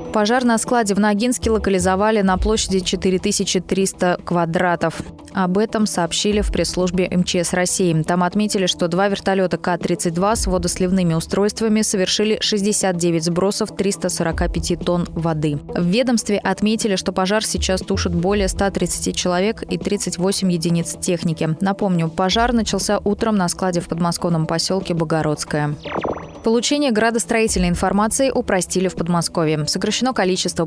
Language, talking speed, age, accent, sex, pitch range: Russian, 125 wpm, 20-39, native, female, 175-210 Hz